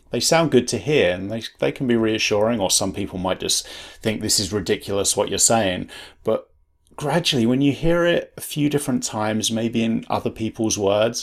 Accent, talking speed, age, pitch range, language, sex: British, 205 wpm, 30-49, 95-110 Hz, English, male